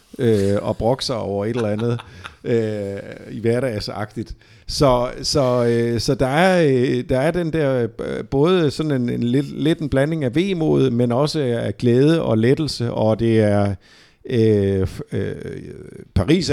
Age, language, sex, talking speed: 50-69, Danish, male, 155 wpm